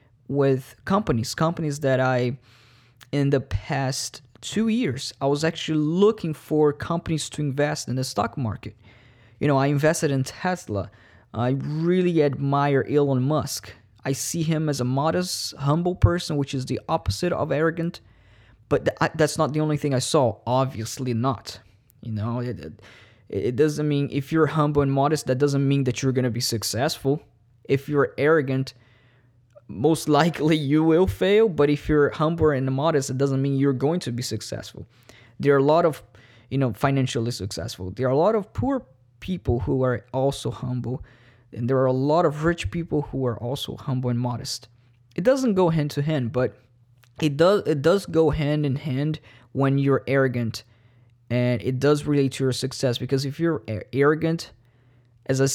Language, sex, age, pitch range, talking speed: English, male, 20-39, 120-150 Hz, 175 wpm